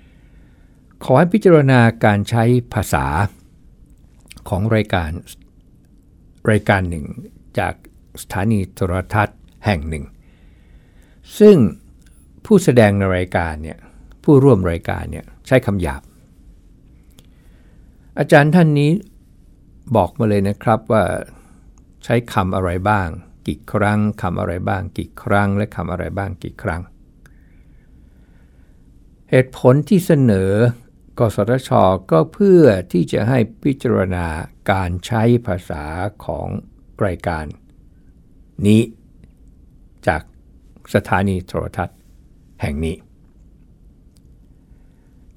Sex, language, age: male, Thai, 60-79